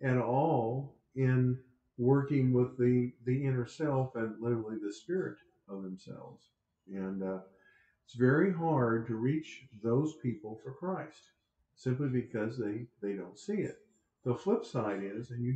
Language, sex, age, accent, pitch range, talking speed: English, male, 50-69, American, 110-135 Hz, 150 wpm